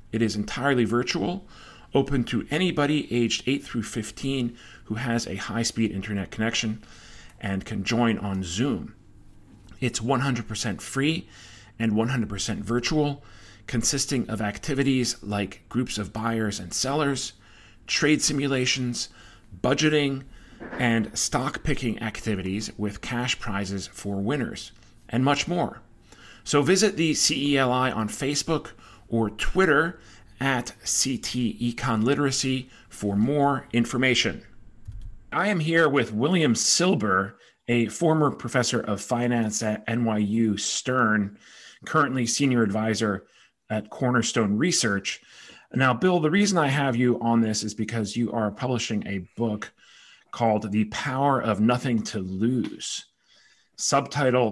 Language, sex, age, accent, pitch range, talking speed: English, male, 40-59, American, 110-135 Hz, 120 wpm